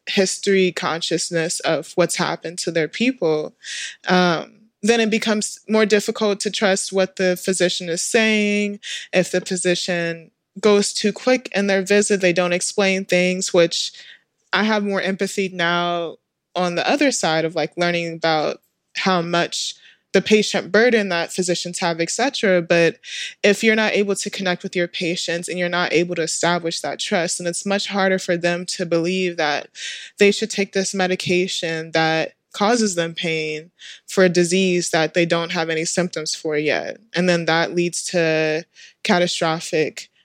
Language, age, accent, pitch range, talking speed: English, 20-39, American, 170-205 Hz, 165 wpm